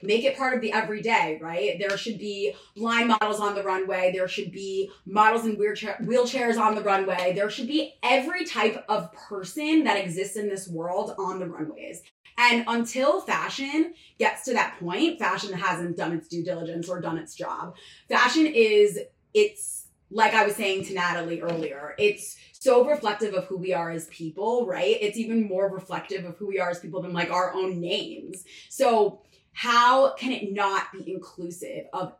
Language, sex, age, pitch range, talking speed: English, female, 20-39, 180-235 Hz, 185 wpm